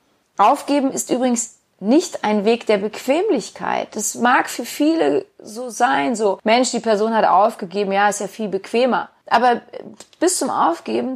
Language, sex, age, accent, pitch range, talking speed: German, female, 30-49, German, 200-265 Hz, 155 wpm